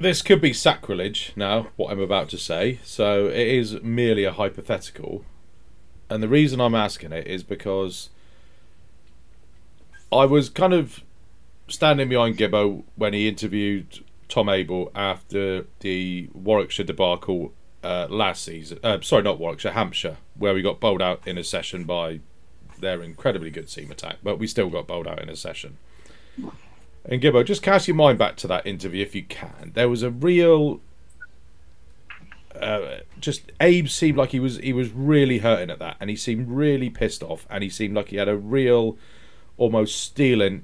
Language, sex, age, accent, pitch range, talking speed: English, male, 30-49, British, 95-135 Hz, 175 wpm